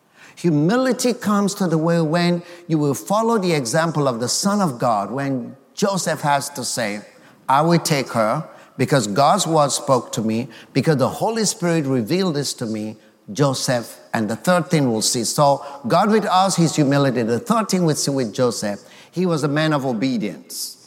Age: 50-69